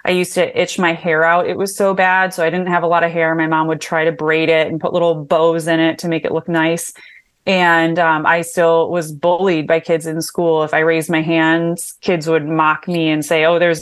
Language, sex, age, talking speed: English, female, 20-39, 260 wpm